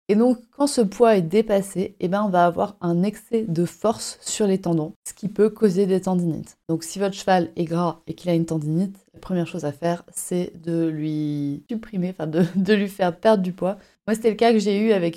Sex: female